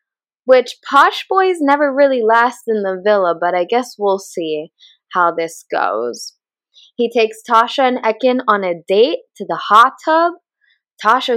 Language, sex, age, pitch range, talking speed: English, female, 10-29, 200-270 Hz, 160 wpm